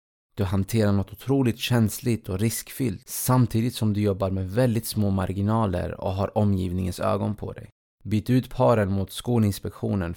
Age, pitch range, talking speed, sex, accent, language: 30-49, 95-115 Hz, 155 wpm, male, Norwegian, Swedish